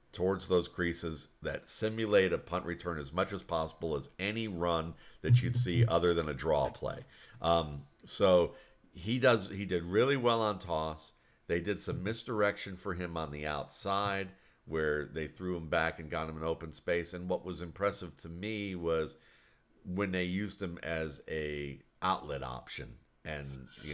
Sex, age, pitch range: male, 50-69, 80-105 Hz